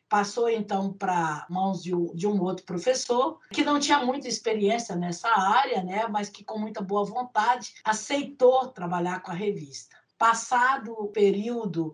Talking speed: 150 wpm